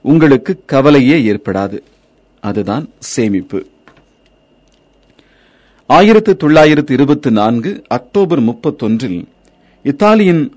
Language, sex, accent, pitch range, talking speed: Tamil, male, native, 115-165 Hz, 55 wpm